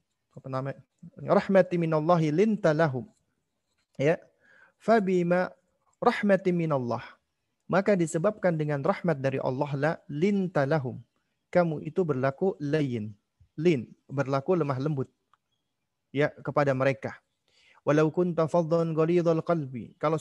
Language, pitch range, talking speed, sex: Indonesian, 140-180 Hz, 95 wpm, male